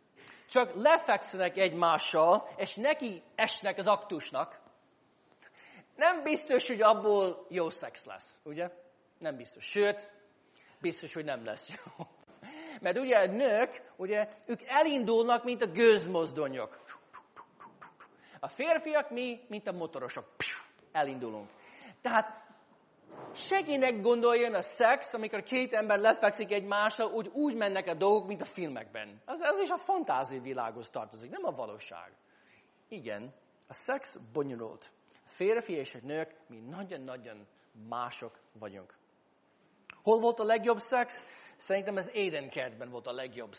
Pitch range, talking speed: 155-235 Hz, 130 wpm